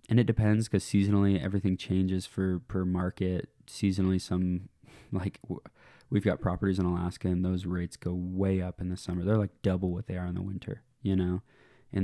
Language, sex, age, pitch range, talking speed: English, male, 20-39, 90-105 Hz, 195 wpm